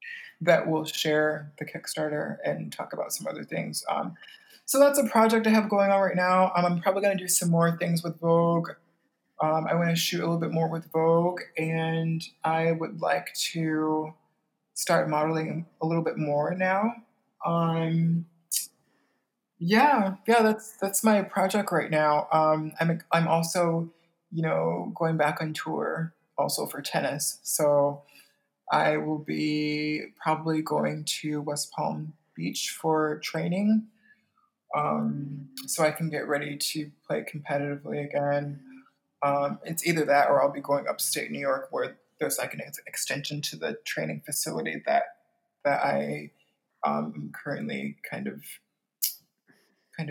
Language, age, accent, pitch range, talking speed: English, 20-39, American, 150-180 Hz, 155 wpm